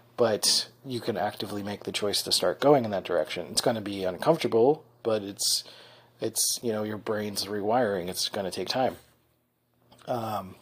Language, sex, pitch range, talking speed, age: English, male, 115-140 Hz, 180 wpm, 30-49